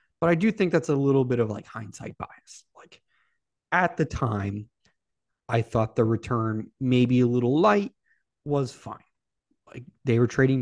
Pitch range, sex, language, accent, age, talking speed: 110-135 Hz, male, English, American, 30-49, 170 wpm